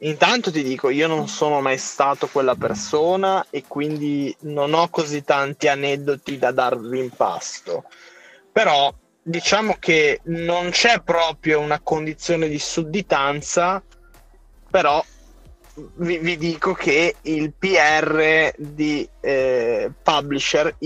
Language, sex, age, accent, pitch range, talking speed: Italian, male, 20-39, native, 145-185 Hz, 120 wpm